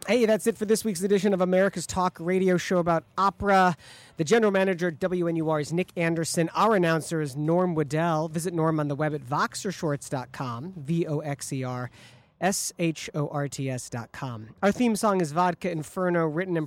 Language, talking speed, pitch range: English, 165 wpm, 155-195 Hz